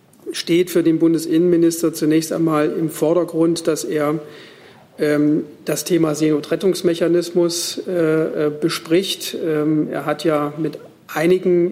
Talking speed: 95 wpm